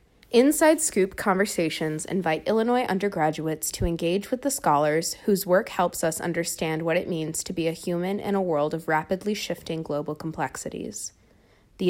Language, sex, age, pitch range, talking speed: English, female, 20-39, 160-190 Hz, 160 wpm